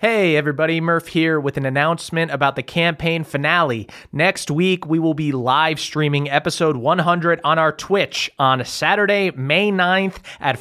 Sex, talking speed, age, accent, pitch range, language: male, 160 wpm, 30-49, American, 130-170 Hz, English